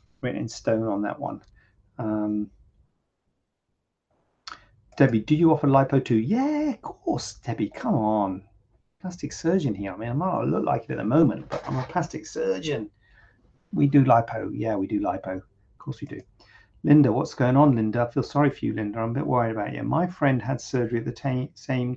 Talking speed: 200 wpm